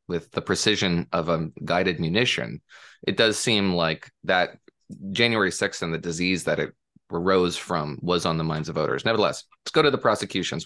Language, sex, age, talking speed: English, male, 20-39, 185 wpm